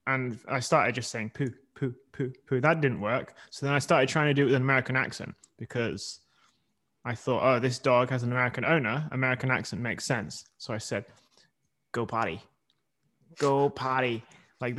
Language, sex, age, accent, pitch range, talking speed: English, male, 20-39, British, 120-150 Hz, 185 wpm